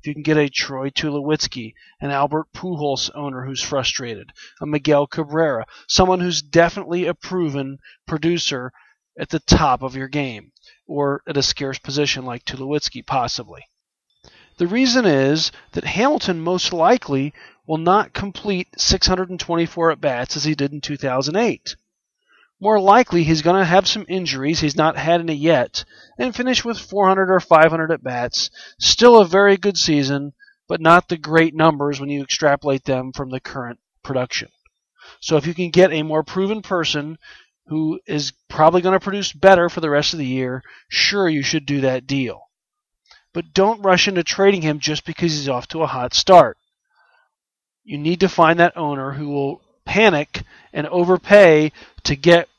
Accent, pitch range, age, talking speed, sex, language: American, 140-180 Hz, 40-59, 165 wpm, male, English